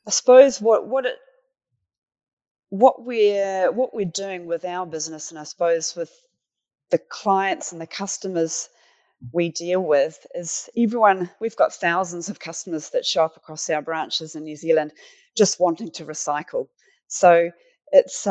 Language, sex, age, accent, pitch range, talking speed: English, female, 30-49, Australian, 170-210 Hz, 155 wpm